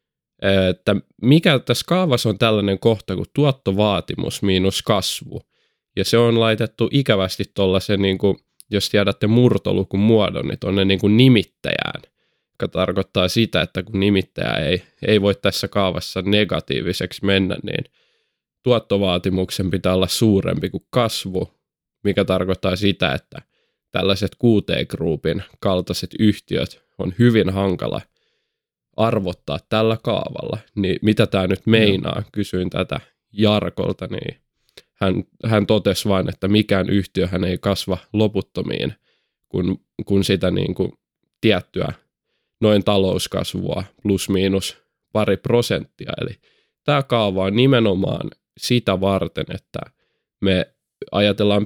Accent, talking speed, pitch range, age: native, 115 wpm, 95-110 Hz, 20-39